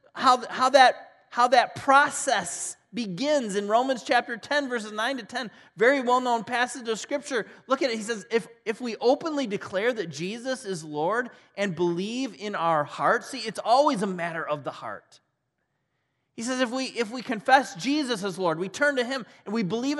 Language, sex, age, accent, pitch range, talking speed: English, male, 30-49, American, 180-260 Hz, 190 wpm